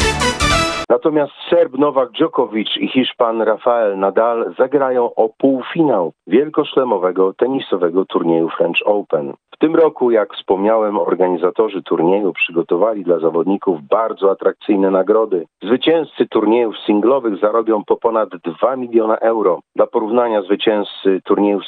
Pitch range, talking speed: 95-150 Hz, 115 wpm